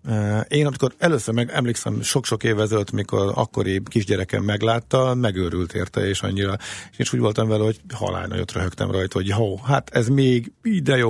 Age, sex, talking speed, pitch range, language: 50-69, male, 180 wpm, 95-120 Hz, Hungarian